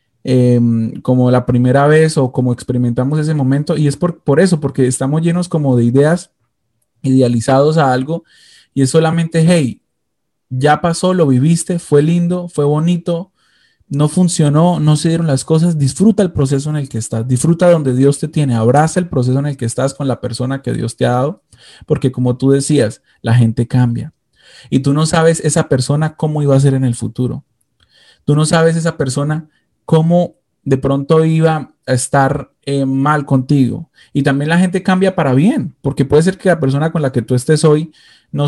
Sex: male